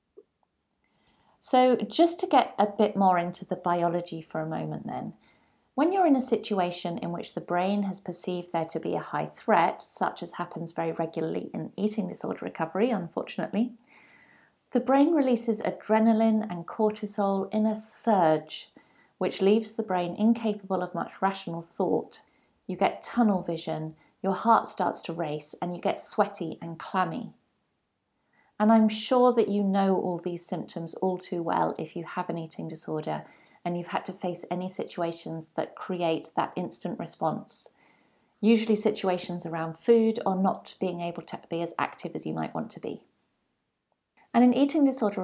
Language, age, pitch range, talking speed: English, 40-59, 175-225 Hz, 165 wpm